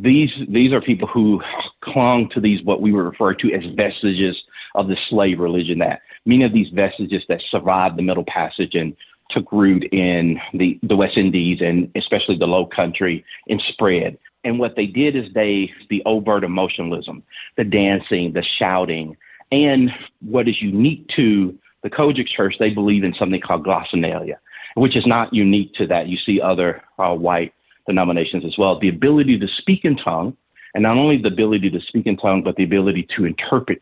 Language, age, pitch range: English, 40-59, 90-110 Hz